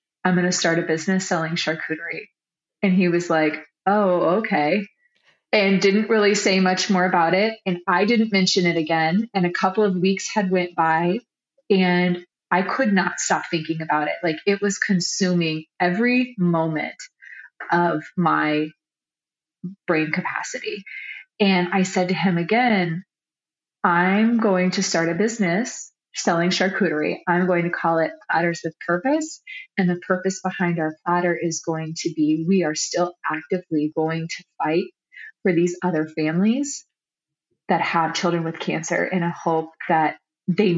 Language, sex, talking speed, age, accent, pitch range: English, female, 155 wpm, 30-49, American, 165-200 Hz